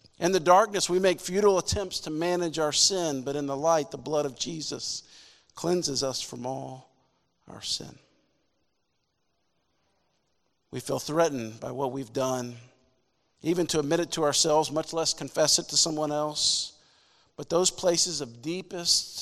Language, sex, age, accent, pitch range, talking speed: English, male, 50-69, American, 135-160 Hz, 155 wpm